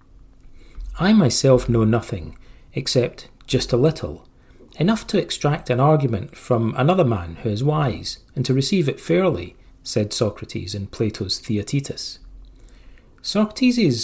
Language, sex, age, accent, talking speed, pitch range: English, male, 40-59, British, 130 wpm, 115-155 Hz